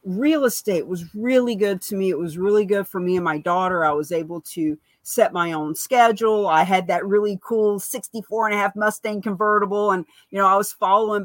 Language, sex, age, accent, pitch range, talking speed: English, female, 40-59, American, 175-210 Hz, 220 wpm